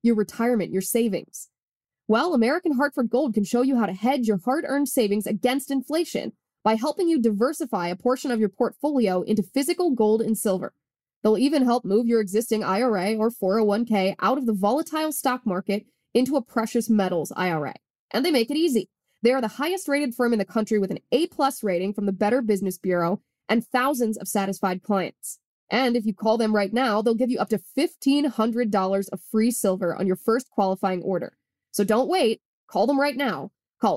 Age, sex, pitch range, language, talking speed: 20-39, female, 200-270 Hz, English, 195 wpm